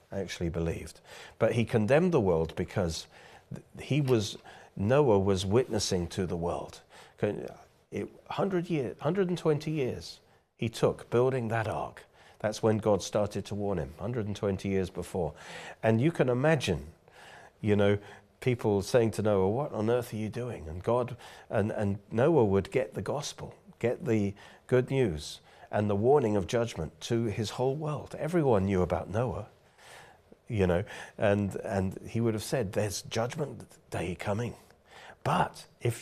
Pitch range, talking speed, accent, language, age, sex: 95-120 Hz, 150 wpm, British, English, 40-59, male